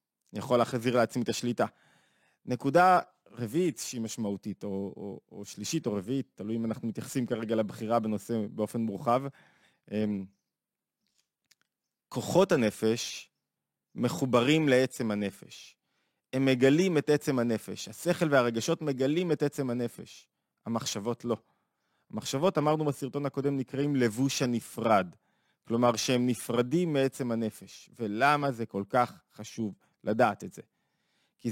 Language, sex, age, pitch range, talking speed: Hebrew, male, 20-39, 115-140 Hz, 125 wpm